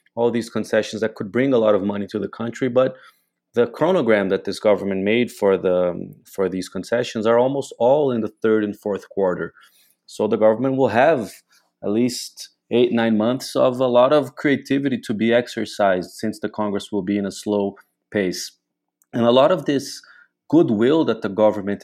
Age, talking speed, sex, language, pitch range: 30-49, 190 wpm, male, English, 105-125 Hz